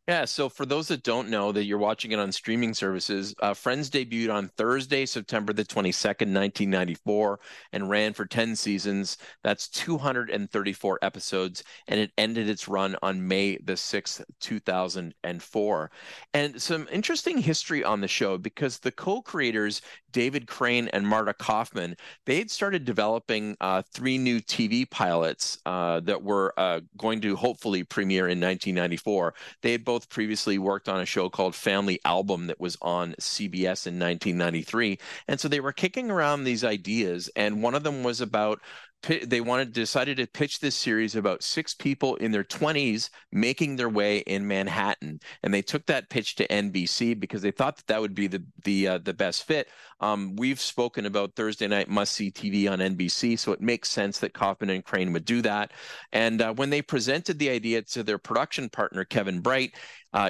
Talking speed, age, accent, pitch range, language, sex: 180 wpm, 40-59, American, 95-120 Hz, English, male